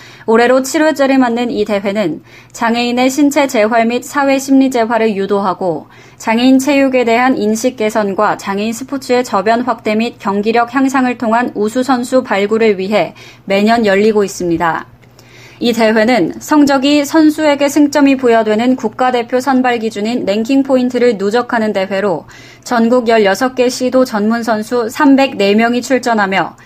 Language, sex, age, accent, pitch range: Korean, female, 20-39, native, 210-255 Hz